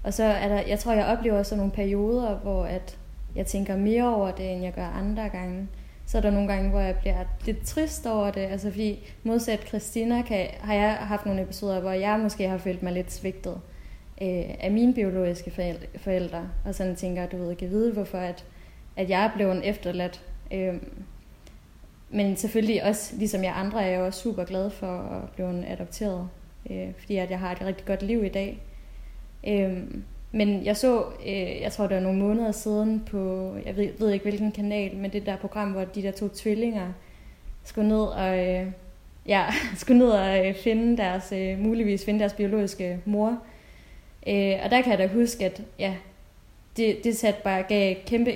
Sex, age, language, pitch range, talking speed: female, 20-39, Danish, 190-210 Hz, 190 wpm